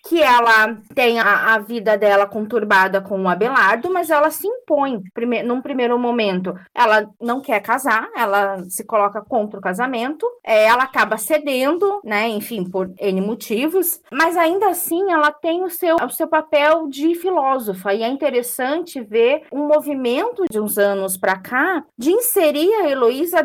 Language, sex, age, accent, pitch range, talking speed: Portuguese, female, 20-39, Brazilian, 225-325 Hz, 160 wpm